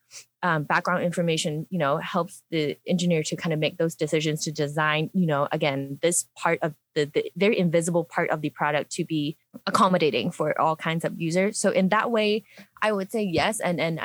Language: English